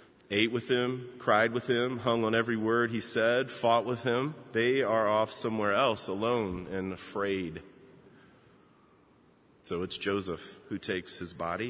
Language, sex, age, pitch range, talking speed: English, male, 40-59, 105-130 Hz, 155 wpm